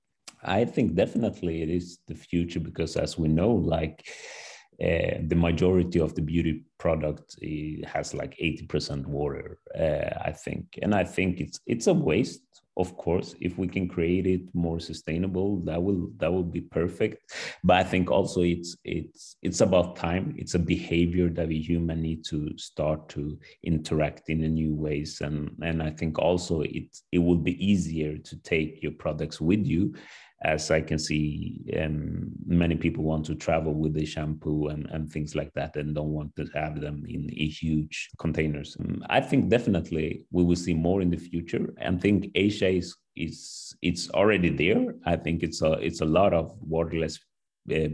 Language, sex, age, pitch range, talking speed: English, male, 30-49, 80-85 Hz, 185 wpm